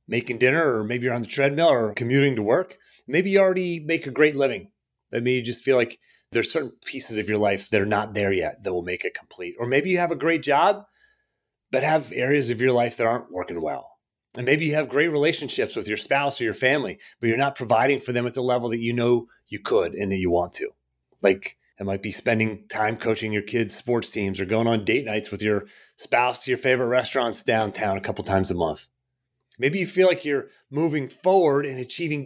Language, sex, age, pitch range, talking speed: English, male, 30-49, 115-150 Hz, 235 wpm